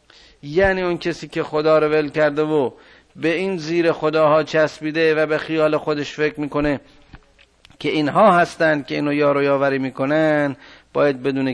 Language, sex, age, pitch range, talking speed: Persian, male, 50-69, 150-160 Hz, 155 wpm